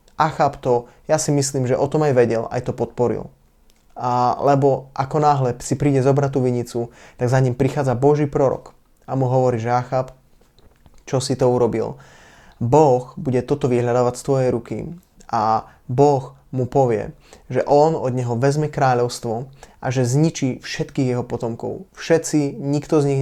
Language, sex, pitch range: Slovak, male, 125-145 Hz